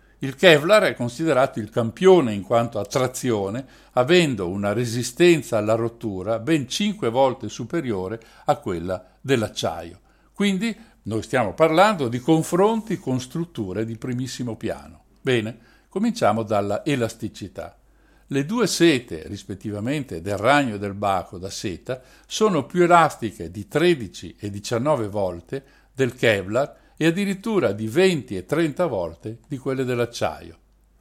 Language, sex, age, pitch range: Italian, male, 60-79, 105-160 Hz